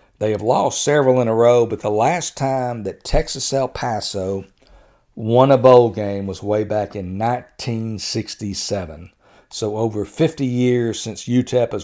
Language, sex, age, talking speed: English, male, 50-69, 155 wpm